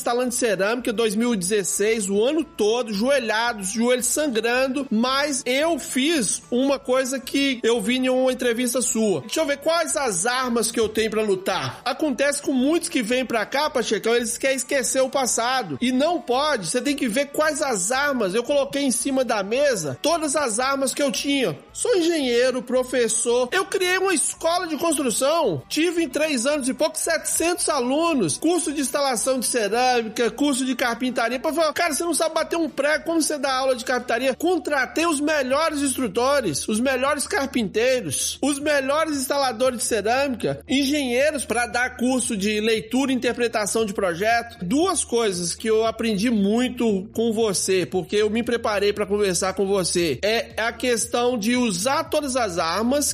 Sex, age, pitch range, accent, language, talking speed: male, 40-59, 230-290 Hz, Brazilian, Portuguese, 175 wpm